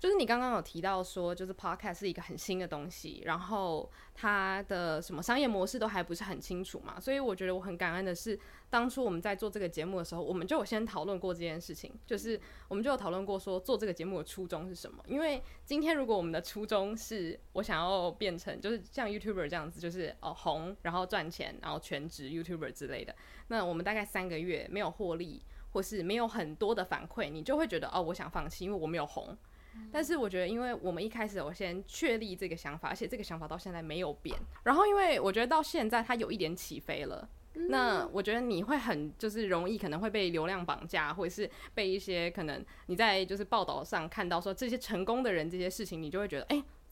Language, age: Chinese, 20-39